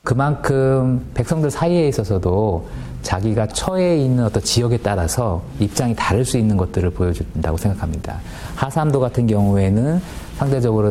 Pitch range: 90-120 Hz